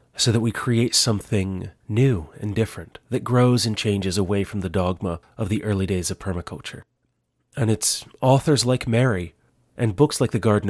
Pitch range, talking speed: 90-110 Hz, 180 wpm